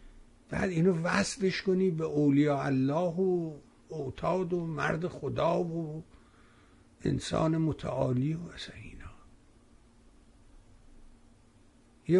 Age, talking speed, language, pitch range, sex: 60-79, 95 wpm, Persian, 120-185 Hz, male